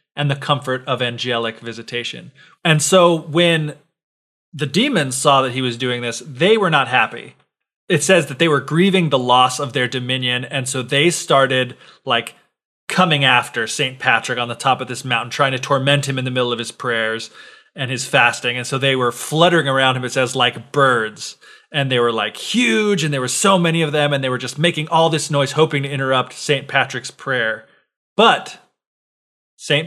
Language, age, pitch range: English, 30-49, 130-155 Hz